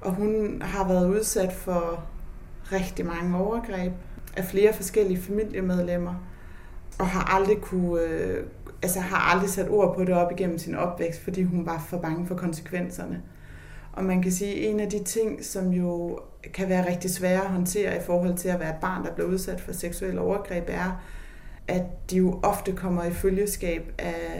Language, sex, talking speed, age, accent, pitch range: Danish, female, 180 wpm, 30-49, native, 170-195 Hz